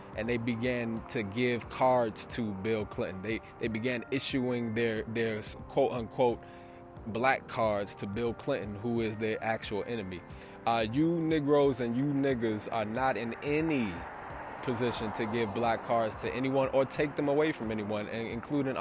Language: English